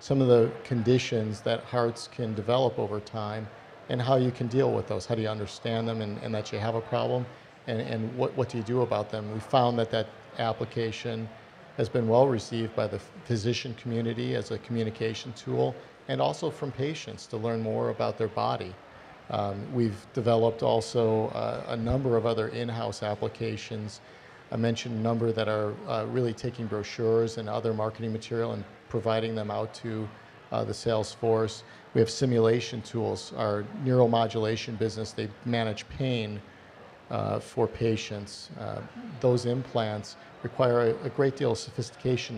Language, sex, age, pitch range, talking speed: Italian, male, 50-69, 110-120 Hz, 175 wpm